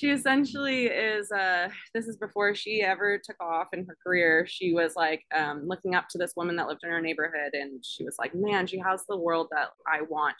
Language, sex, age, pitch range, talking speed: English, female, 20-39, 160-195 Hz, 230 wpm